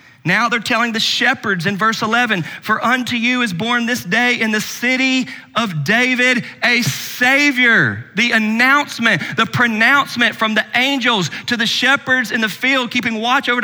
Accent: American